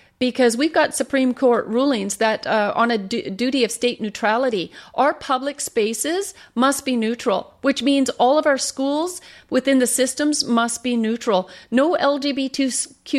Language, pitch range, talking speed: English, 220-265 Hz, 155 wpm